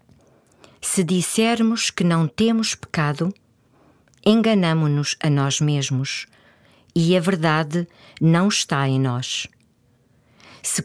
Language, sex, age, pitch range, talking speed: Portuguese, female, 50-69, 140-195 Hz, 100 wpm